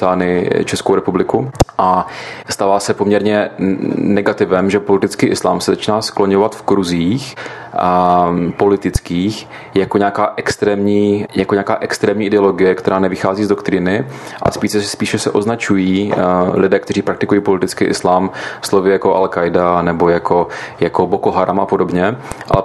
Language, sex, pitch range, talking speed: Czech, male, 95-105 Hz, 130 wpm